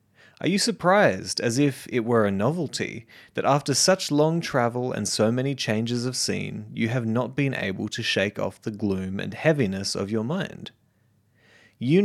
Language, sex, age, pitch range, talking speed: English, male, 30-49, 105-135 Hz, 180 wpm